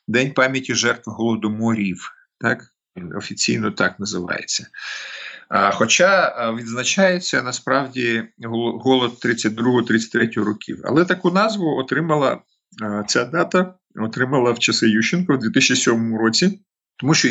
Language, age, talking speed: Ukrainian, 50-69, 95 wpm